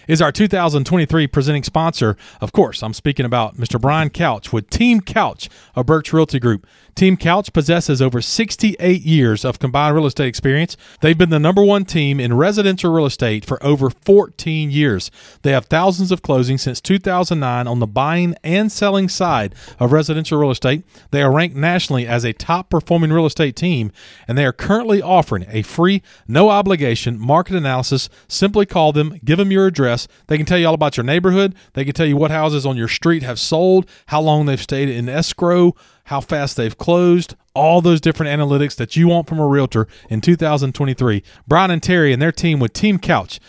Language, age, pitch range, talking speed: English, 40-59, 130-175 Hz, 195 wpm